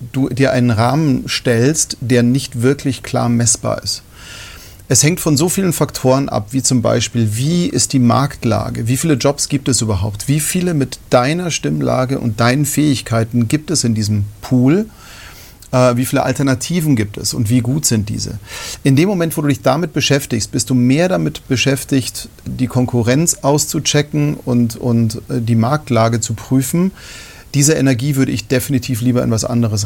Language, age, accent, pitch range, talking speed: German, 40-59, German, 115-140 Hz, 170 wpm